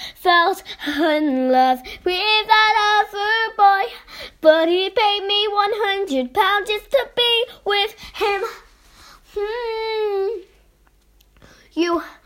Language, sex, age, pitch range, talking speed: English, female, 10-29, 315-400 Hz, 100 wpm